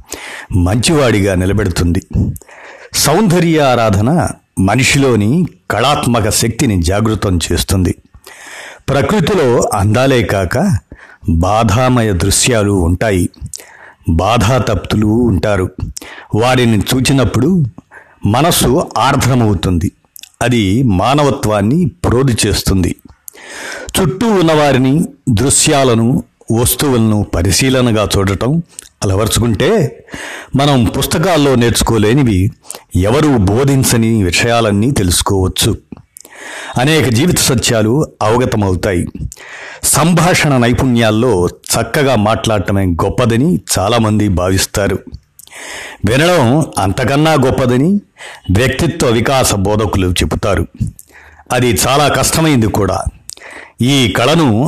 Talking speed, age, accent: 70 wpm, 50-69, native